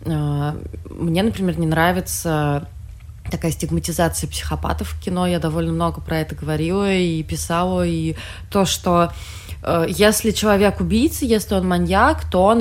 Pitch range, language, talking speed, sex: 155-200 Hz, Russian, 135 wpm, female